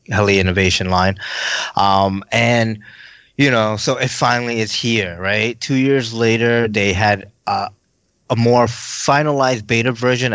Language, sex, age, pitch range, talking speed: English, male, 20-39, 100-120 Hz, 140 wpm